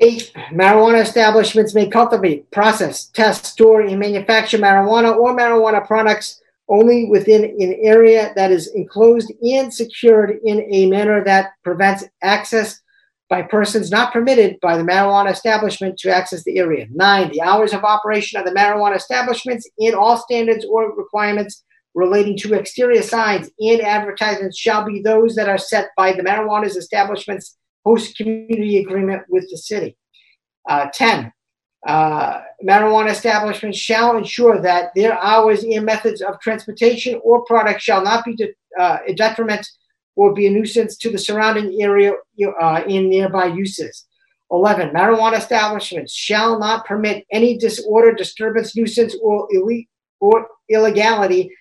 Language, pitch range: English, 195-225 Hz